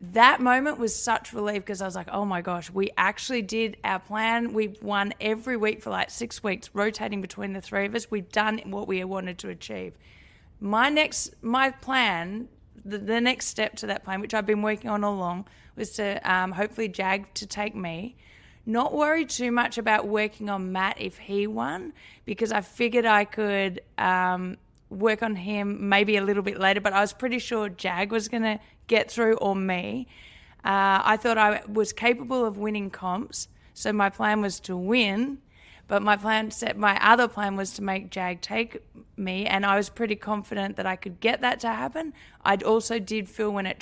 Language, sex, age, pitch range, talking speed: English, female, 20-39, 195-225 Hz, 200 wpm